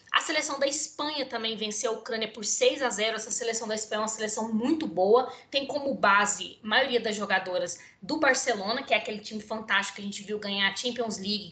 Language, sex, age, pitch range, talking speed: Portuguese, female, 20-39, 205-255 Hz, 225 wpm